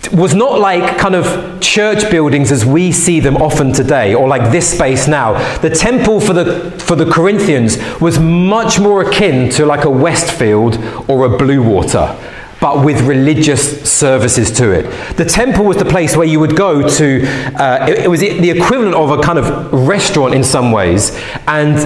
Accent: British